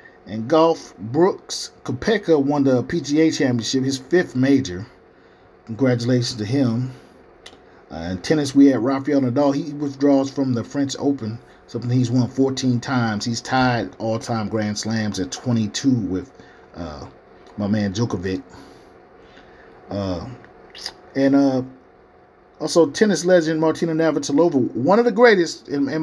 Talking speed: 135 wpm